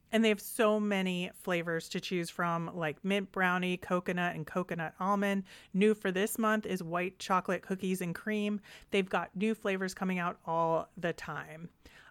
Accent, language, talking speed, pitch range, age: American, English, 175 wpm, 175-205 Hz, 30-49